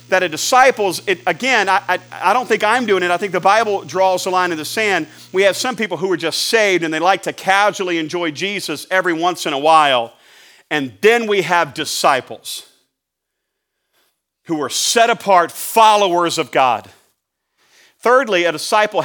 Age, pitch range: 40-59, 145-190 Hz